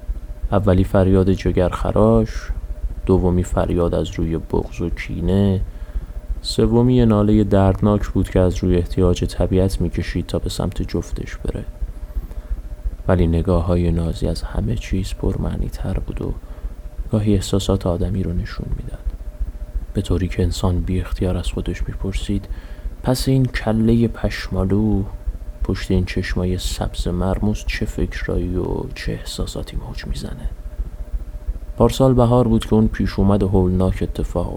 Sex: male